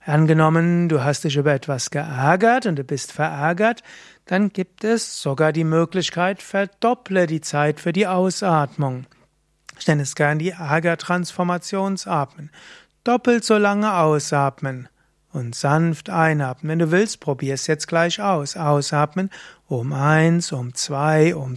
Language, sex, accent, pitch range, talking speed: German, male, German, 145-185 Hz, 140 wpm